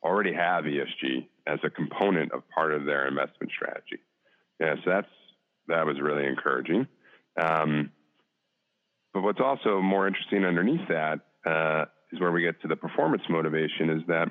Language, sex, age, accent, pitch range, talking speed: English, male, 40-59, American, 75-95 Hz, 160 wpm